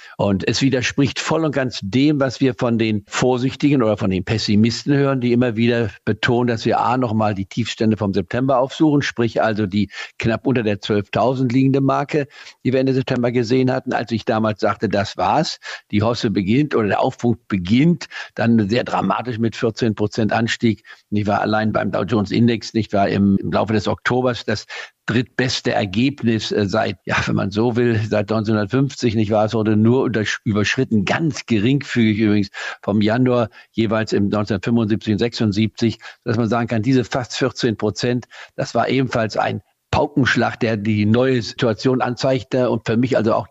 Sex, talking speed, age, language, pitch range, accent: male, 180 wpm, 50-69, German, 110-130 Hz, German